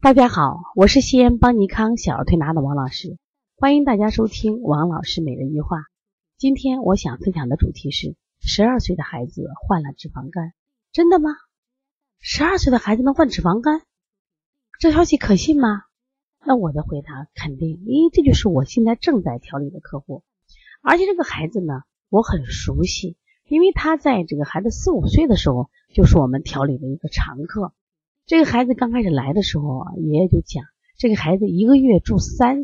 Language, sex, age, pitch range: Chinese, female, 30-49, 160-265 Hz